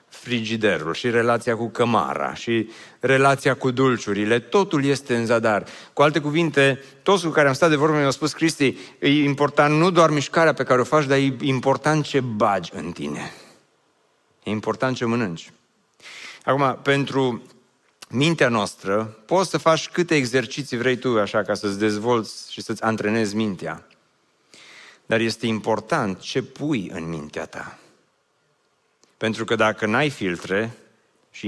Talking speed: 150 wpm